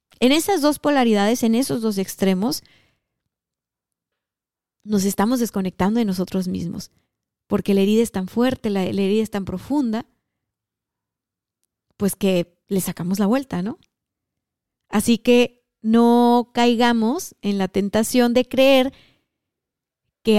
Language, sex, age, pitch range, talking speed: Spanish, female, 30-49, 195-240 Hz, 125 wpm